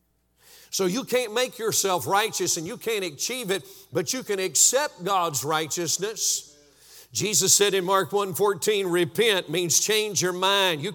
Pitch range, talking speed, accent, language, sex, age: 130-205 Hz, 160 wpm, American, English, male, 50-69